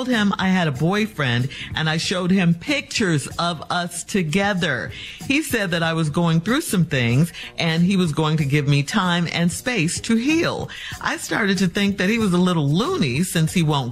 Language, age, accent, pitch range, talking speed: English, 50-69, American, 145-215 Hz, 205 wpm